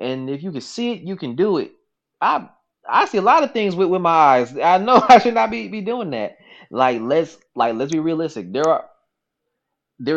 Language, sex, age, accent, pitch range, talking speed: English, male, 20-39, American, 115-190 Hz, 230 wpm